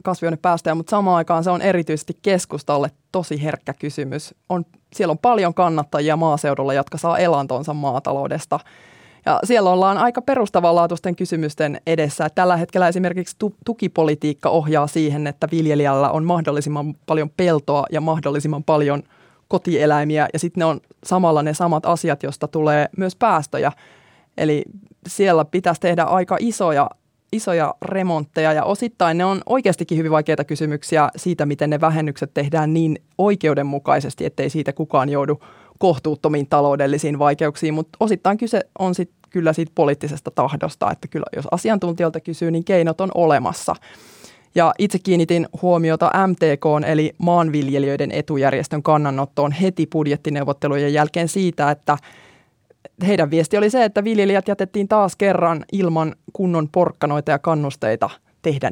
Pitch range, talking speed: 150-180 Hz, 135 wpm